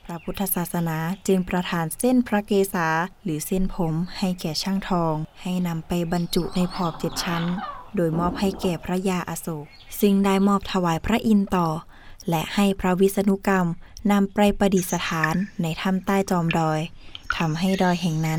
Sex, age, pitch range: female, 10-29, 165-195 Hz